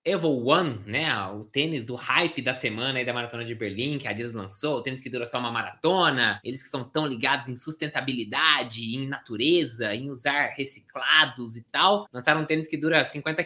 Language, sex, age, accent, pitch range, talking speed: Portuguese, male, 20-39, Brazilian, 125-170 Hz, 200 wpm